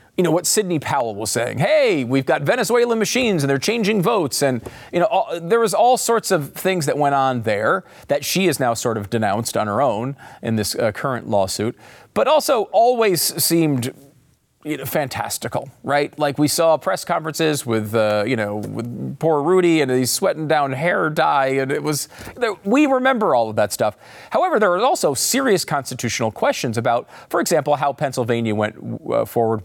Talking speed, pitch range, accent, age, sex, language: 190 wpm, 120-180 Hz, American, 40-59, male, English